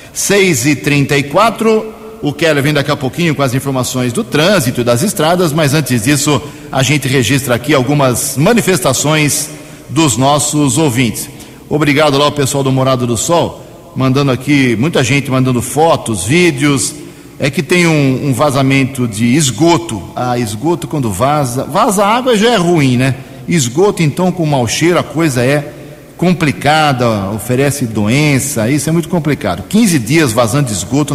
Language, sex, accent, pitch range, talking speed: Portuguese, male, Brazilian, 130-155 Hz, 155 wpm